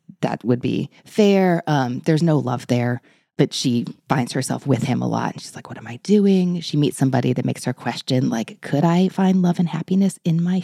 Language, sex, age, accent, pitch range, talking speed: English, female, 20-39, American, 130-180 Hz, 225 wpm